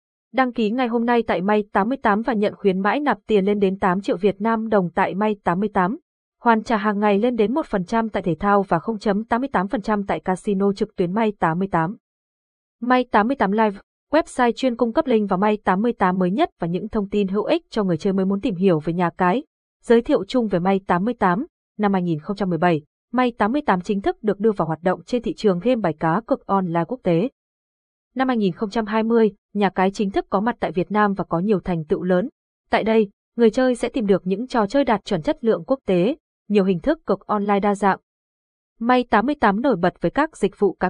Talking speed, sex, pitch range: 215 wpm, female, 185-235 Hz